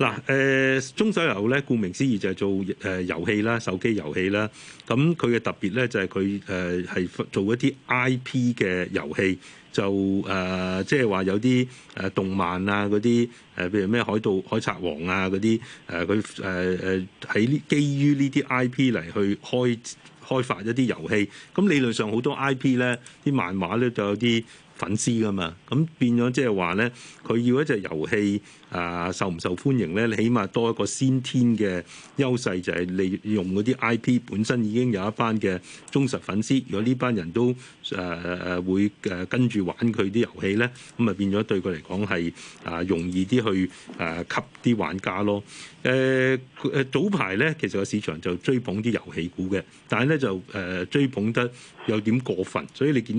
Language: Chinese